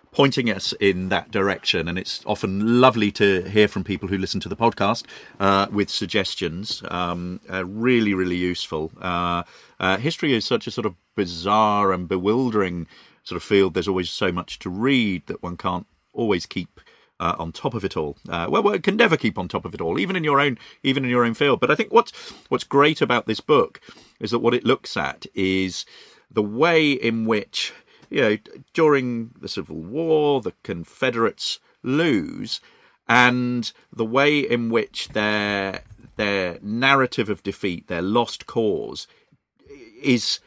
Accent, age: British, 40-59